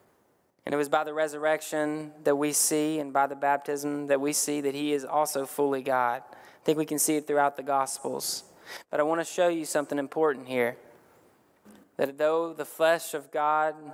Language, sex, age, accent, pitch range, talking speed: English, male, 20-39, American, 130-150 Hz, 200 wpm